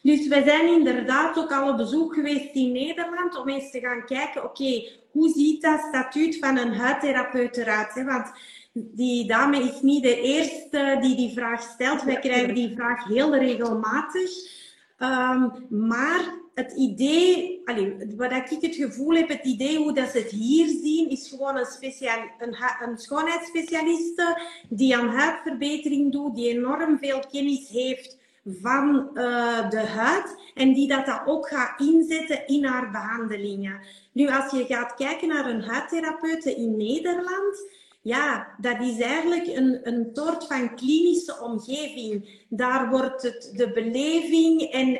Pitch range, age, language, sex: 245-305 Hz, 30-49, Dutch, female